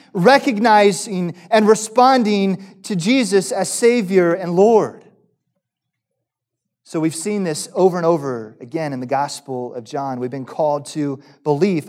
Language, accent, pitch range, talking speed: English, American, 160-255 Hz, 135 wpm